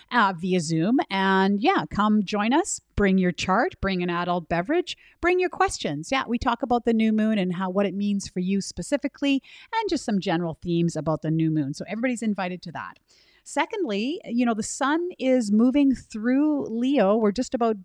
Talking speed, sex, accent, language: 200 wpm, female, American, English